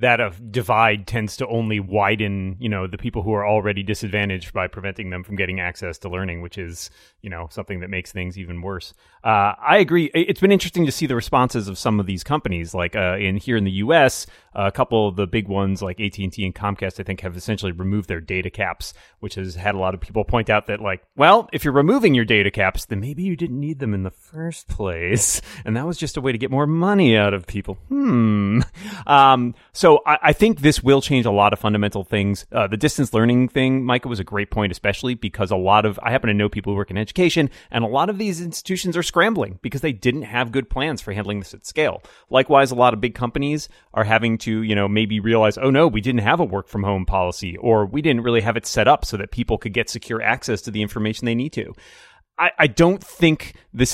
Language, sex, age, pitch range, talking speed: English, male, 30-49, 100-130 Hz, 245 wpm